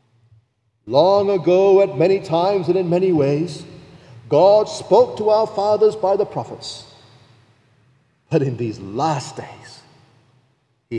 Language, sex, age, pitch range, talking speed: English, male, 50-69, 125-200 Hz, 125 wpm